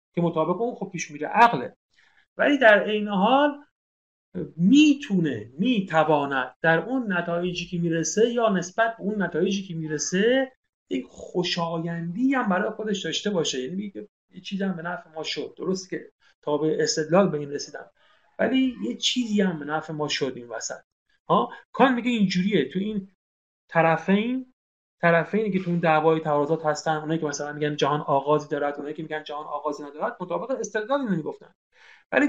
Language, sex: Persian, male